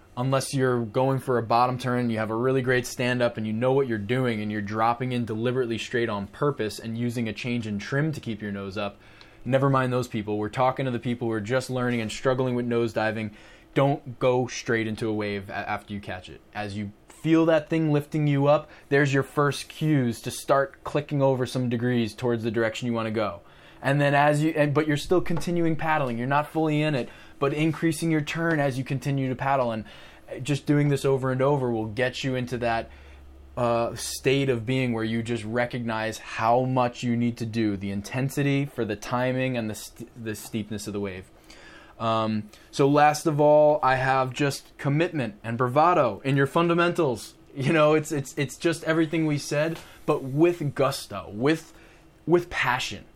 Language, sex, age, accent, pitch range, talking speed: English, male, 20-39, American, 110-145 Hz, 205 wpm